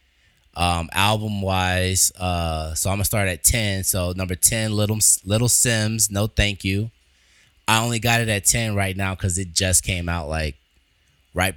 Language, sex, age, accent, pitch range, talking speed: English, male, 20-39, American, 80-100 Hz, 175 wpm